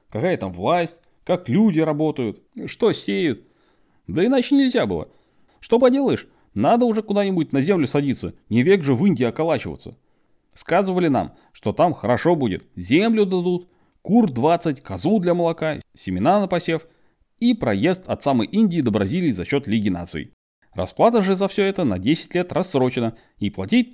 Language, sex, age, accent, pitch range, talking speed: Russian, male, 30-49, native, 125-205 Hz, 160 wpm